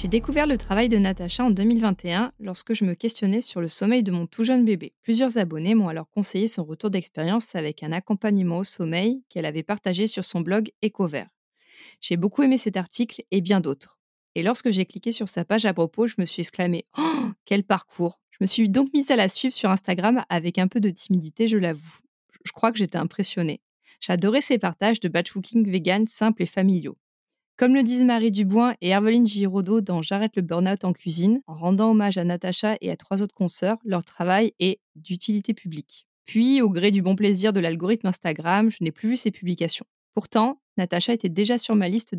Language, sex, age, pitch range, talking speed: French, female, 20-39, 180-225 Hz, 210 wpm